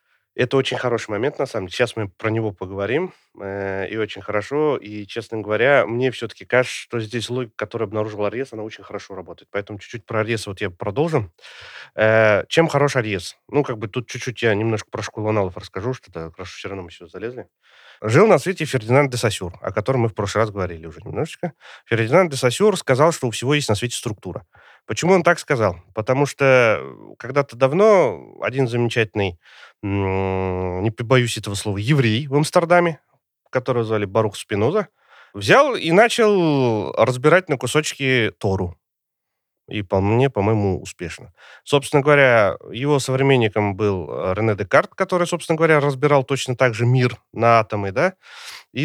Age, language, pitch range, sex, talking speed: 30-49, Russian, 105-140 Hz, male, 165 wpm